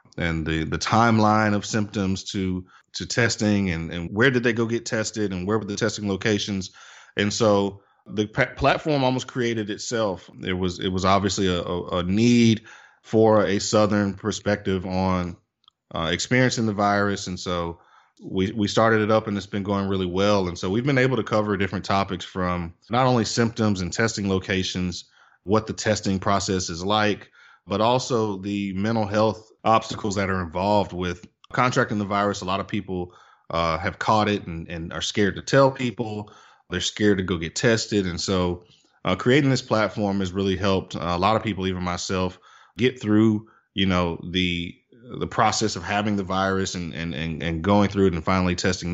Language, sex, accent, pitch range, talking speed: English, male, American, 90-110 Hz, 190 wpm